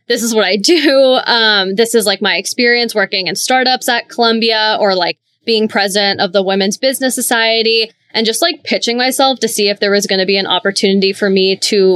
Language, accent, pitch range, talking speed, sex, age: English, American, 195-230 Hz, 215 wpm, female, 20-39